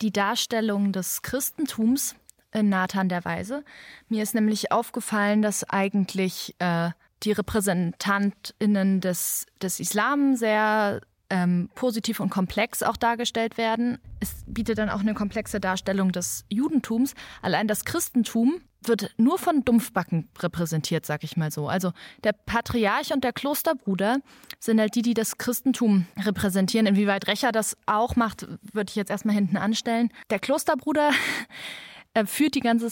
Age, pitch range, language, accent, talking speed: 20-39, 200-245 Hz, German, German, 140 wpm